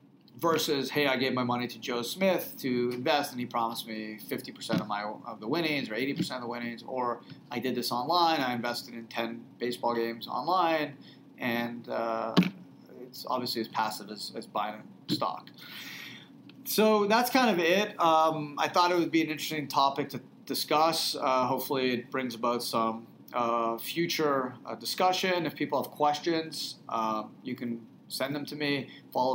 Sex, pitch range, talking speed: male, 120-145 Hz, 180 wpm